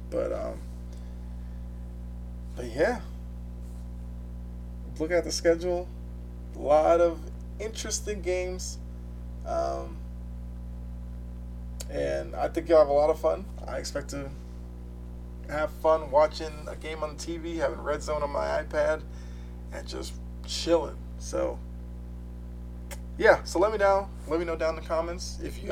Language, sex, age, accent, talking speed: English, male, 20-39, American, 135 wpm